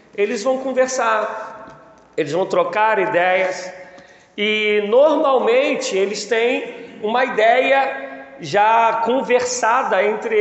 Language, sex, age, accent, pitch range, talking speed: Portuguese, male, 40-59, Brazilian, 195-235 Hz, 90 wpm